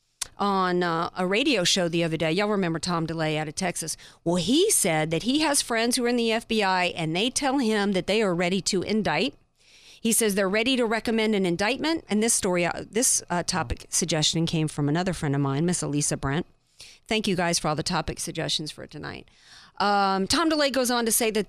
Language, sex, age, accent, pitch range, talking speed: English, female, 40-59, American, 175-225 Hz, 220 wpm